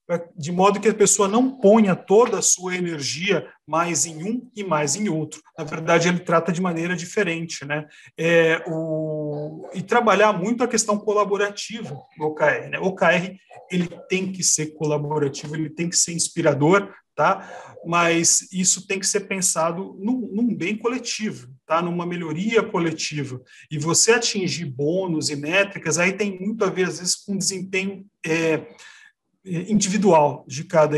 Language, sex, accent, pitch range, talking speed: Portuguese, male, Brazilian, 160-205 Hz, 155 wpm